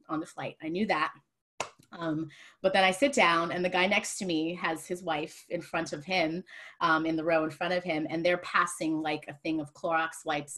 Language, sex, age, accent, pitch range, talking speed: English, female, 30-49, American, 170-245 Hz, 240 wpm